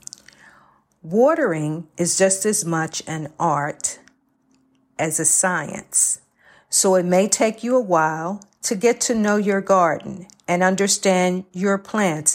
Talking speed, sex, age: 130 wpm, female, 50-69